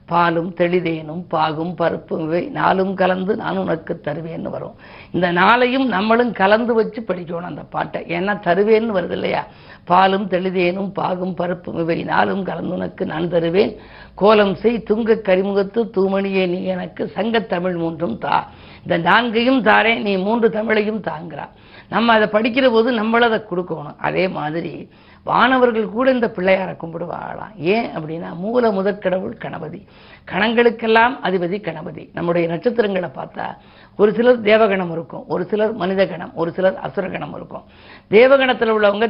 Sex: female